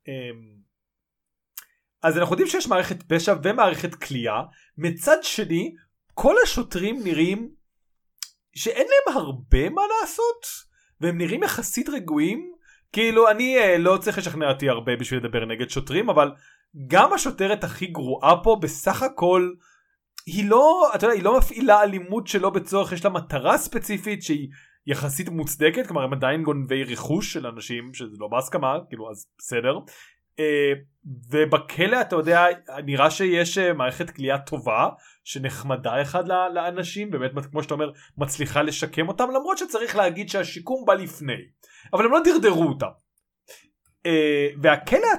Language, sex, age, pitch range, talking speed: Hebrew, male, 20-39, 150-230 Hz, 130 wpm